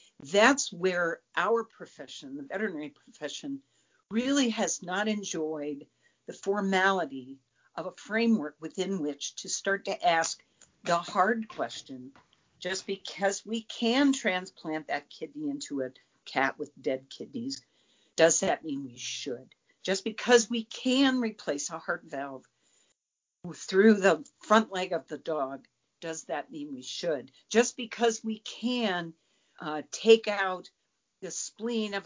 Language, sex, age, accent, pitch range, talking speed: English, female, 50-69, American, 160-230 Hz, 135 wpm